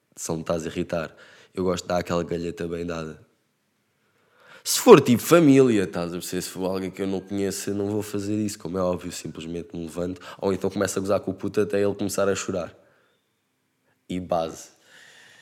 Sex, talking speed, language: male, 200 wpm, Portuguese